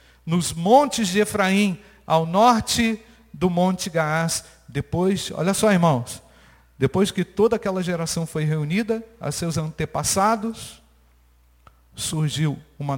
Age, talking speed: 50-69, 115 wpm